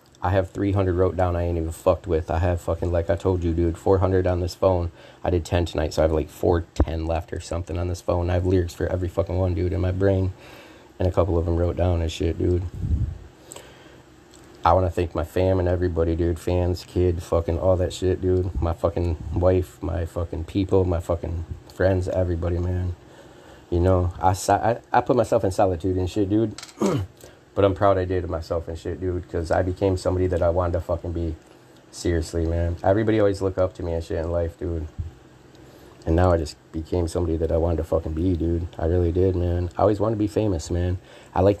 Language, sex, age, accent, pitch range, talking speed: English, male, 30-49, American, 85-95 Hz, 230 wpm